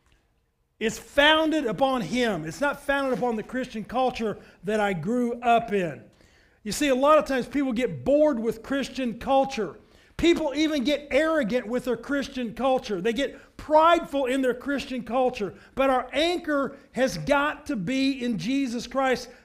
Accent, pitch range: American, 230-285 Hz